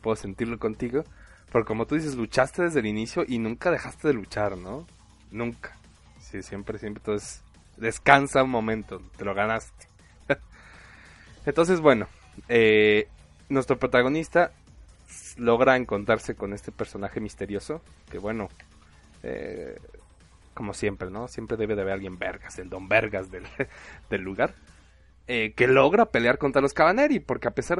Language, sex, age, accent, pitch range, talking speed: Spanish, male, 20-39, Mexican, 95-130 Hz, 145 wpm